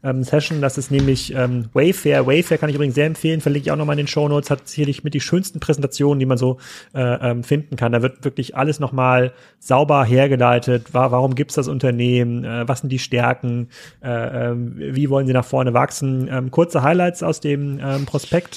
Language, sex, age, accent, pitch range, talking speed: German, male, 30-49, German, 130-160 Hz, 185 wpm